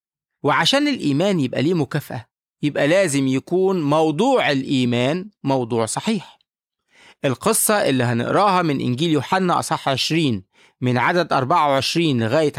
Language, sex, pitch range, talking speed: English, male, 125-180 Hz, 115 wpm